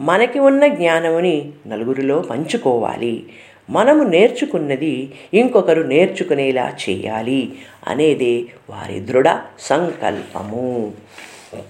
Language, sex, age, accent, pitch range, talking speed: Telugu, female, 50-69, native, 130-185 Hz, 70 wpm